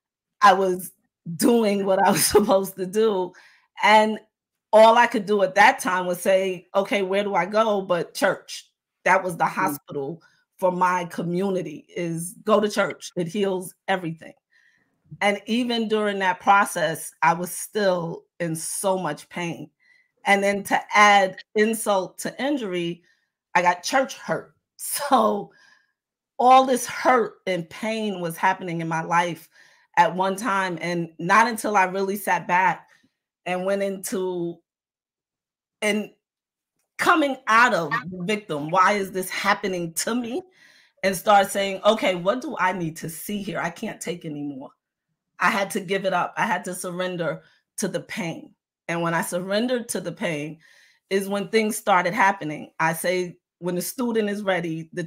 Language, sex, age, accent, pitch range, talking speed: English, female, 40-59, American, 175-215 Hz, 160 wpm